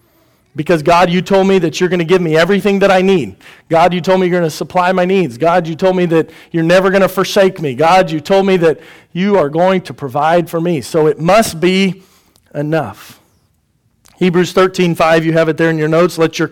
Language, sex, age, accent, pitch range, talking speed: English, male, 40-59, American, 165-205 Hz, 235 wpm